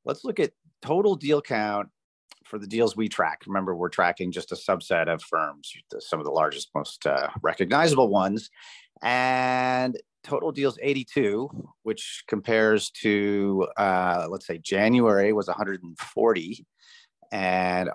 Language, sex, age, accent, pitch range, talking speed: English, male, 40-59, American, 90-110 Hz, 135 wpm